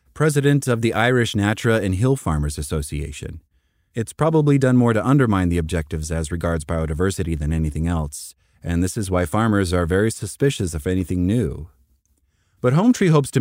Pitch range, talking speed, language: 85-120 Hz, 175 wpm, English